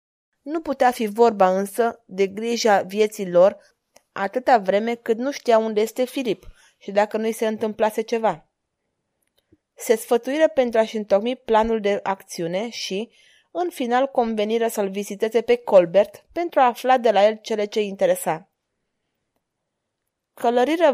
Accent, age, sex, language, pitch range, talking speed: native, 20-39, female, Romanian, 210-255 Hz, 145 wpm